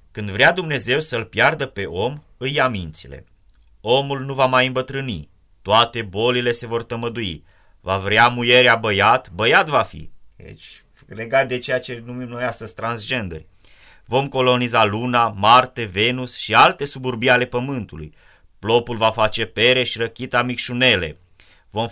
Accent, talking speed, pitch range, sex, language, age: native, 145 wpm, 100-125 Hz, male, Romanian, 30-49